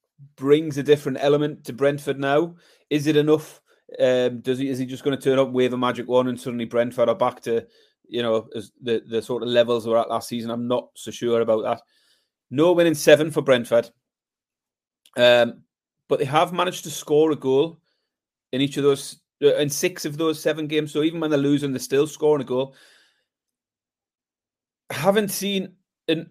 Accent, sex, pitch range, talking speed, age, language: British, male, 120-155 Hz, 200 wpm, 30-49, English